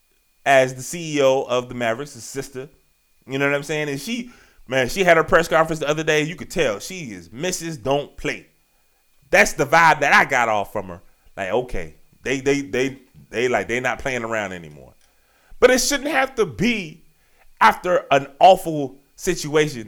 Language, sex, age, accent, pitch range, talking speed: English, male, 20-39, American, 130-200 Hz, 195 wpm